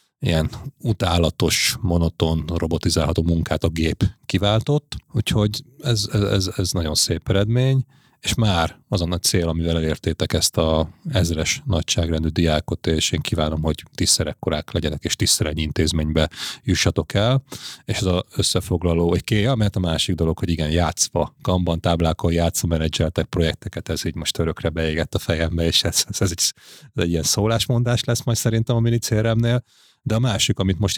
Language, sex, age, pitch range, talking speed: Hungarian, male, 30-49, 85-115 Hz, 160 wpm